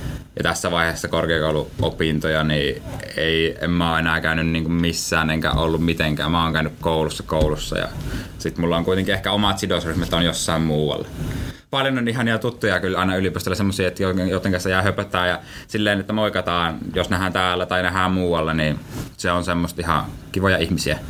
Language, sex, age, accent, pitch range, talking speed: Finnish, male, 20-39, native, 85-100 Hz, 170 wpm